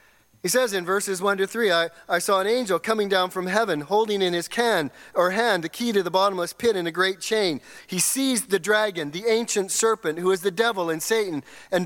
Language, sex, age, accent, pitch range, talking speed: English, male, 40-59, American, 180-230 Hz, 235 wpm